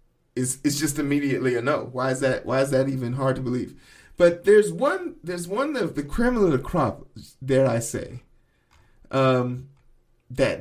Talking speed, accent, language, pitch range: 180 wpm, American, English, 130-160 Hz